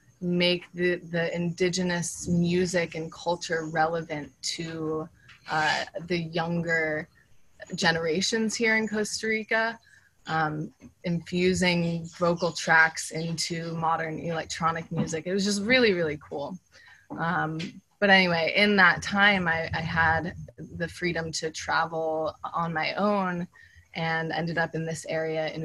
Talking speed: 125 wpm